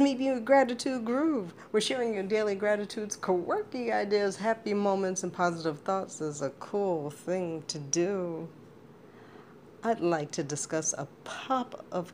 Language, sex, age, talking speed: English, female, 50-69, 150 wpm